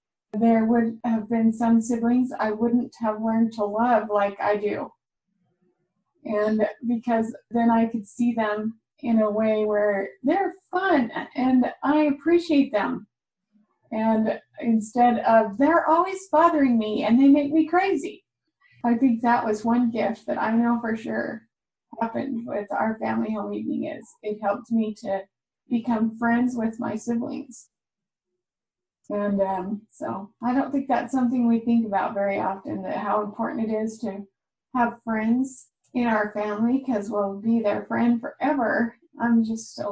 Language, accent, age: English, American, 20-39